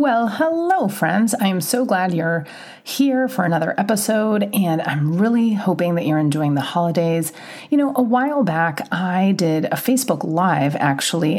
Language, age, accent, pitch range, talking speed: English, 30-49, American, 155-210 Hz, 170 wpm